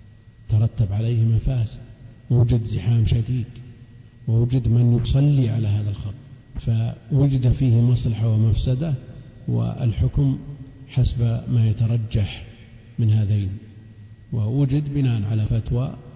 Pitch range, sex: 110-130 Hz, male